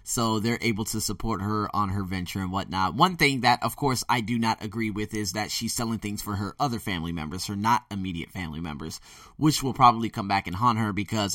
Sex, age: male, 30-49